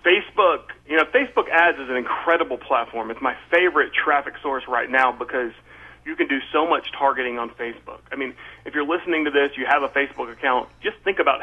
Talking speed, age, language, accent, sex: 210 wpm, 40-59, English, American, male